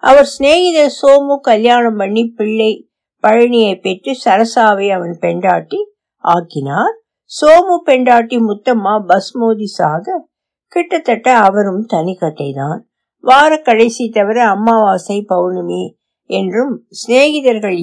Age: 60-79